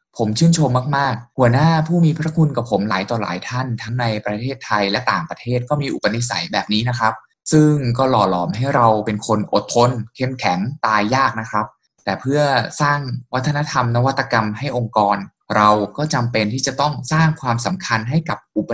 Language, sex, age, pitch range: Thai, male, 20-39, 110-150 Hz